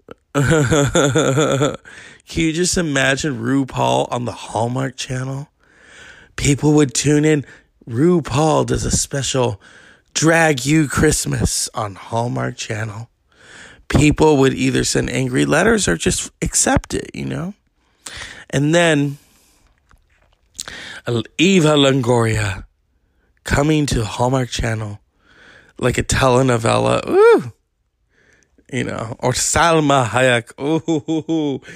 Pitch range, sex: 120-150 Hz, male